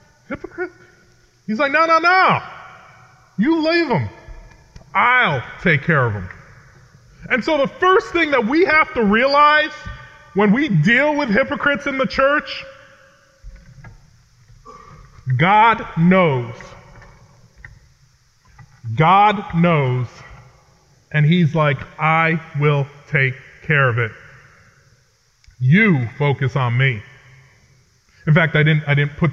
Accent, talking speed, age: American, 115 wpm, 30-49